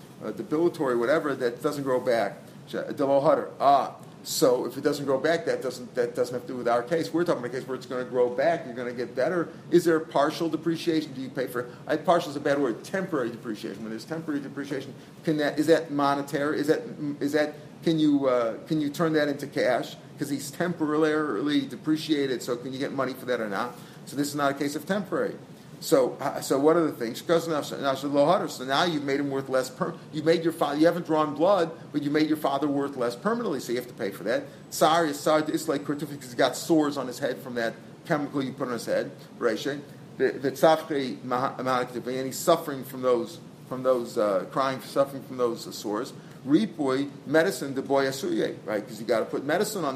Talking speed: 215 wpm